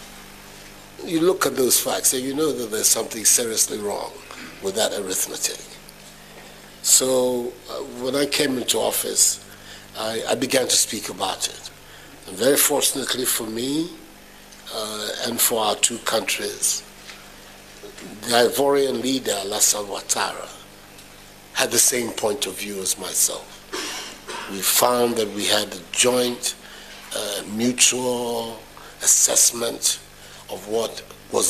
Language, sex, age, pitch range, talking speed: English, male, 60-79, 110-140 Hz, 125 wpm